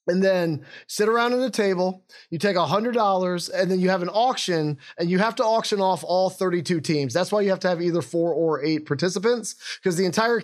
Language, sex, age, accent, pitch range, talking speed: English, male, 20-39, American, 165-200 Hz, 235 wpm